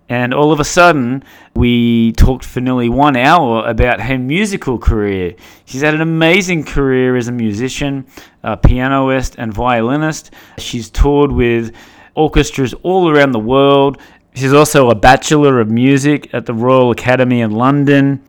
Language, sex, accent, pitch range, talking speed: English, male, Australian, 120-150 Hz, 155 wpm